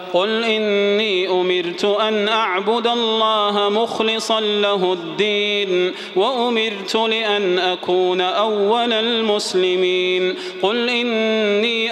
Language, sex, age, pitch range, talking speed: Arabic, male, 30-49, 195-225 Hz, 80 wpm